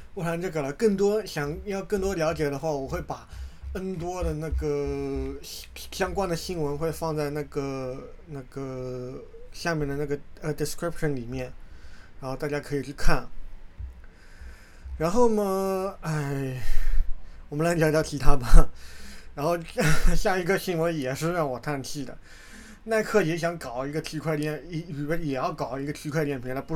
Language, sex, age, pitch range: Chinese, male, 20-39, 140-190 Hz